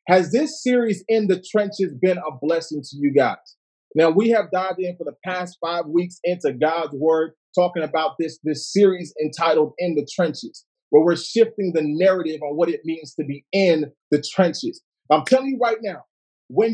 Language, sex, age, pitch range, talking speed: English, male, 30-49, 170-210 Hz, 195 wpm